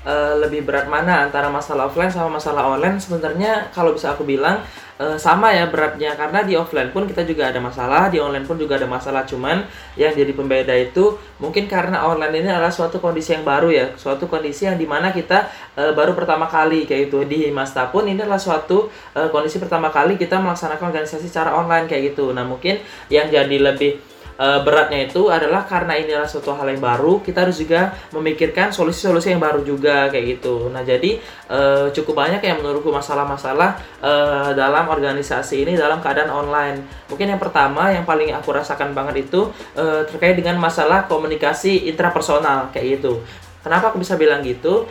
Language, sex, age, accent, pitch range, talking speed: Indonesian, male, 20-39, native, 140-175 Hz, 185 wpm